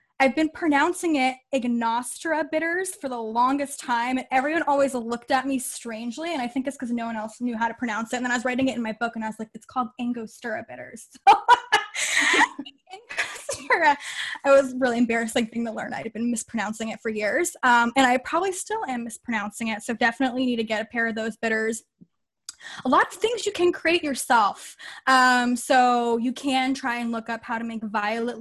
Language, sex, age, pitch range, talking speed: English, female, 10-29, 230-275 Hz, 215 wpm